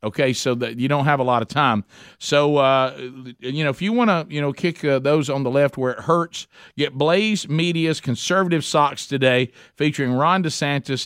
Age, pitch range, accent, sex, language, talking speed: 50-69, 130-180 Hz, American, male, English, 205 wpm